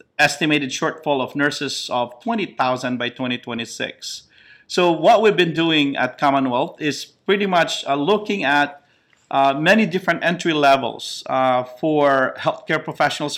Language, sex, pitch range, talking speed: English, male, 130-155 Hz, 130 wpm